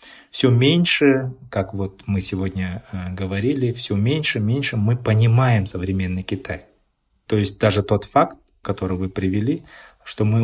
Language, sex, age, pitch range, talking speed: Russian, male, 20-39, 100-125 Hz, 140 wpm